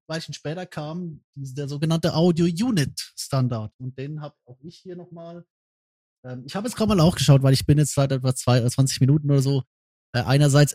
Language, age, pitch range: German, 20-39, 125-155 Hz